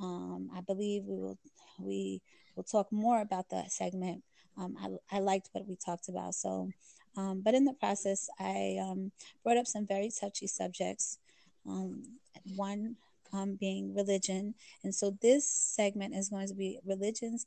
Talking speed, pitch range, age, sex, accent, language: 165 wpm, 185-210 Hz, 20-39, female, American, English